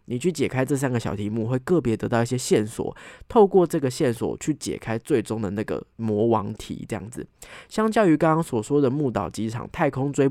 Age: 20-39